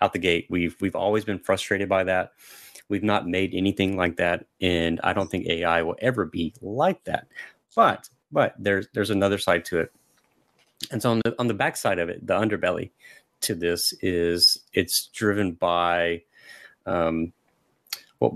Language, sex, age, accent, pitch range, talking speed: English, male, 30-49, American, 90-105 Hz, 175 wpm